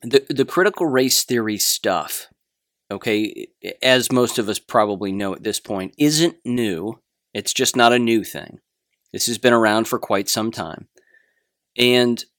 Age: 30-49